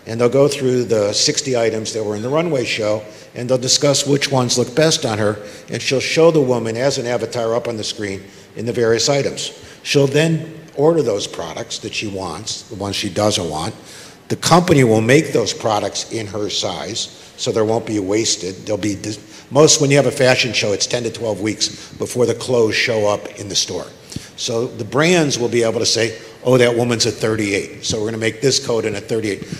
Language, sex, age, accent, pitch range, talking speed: English, male, 50-69, American, 110-135 Hz, 225 wpm